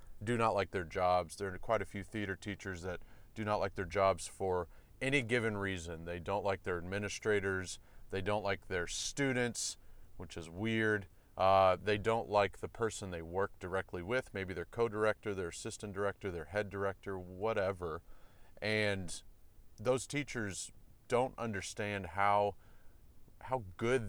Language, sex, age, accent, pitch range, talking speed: English, male, 30-49, American, 95-110 Hz, 155 wpm